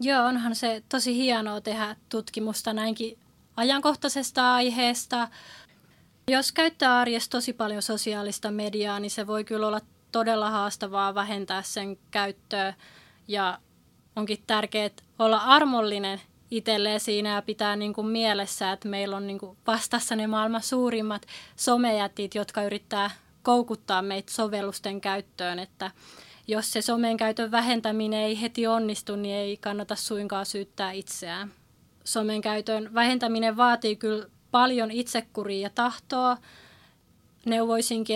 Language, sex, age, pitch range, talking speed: Finnish, female, 20-39, 205-235 Hz, 120 wpm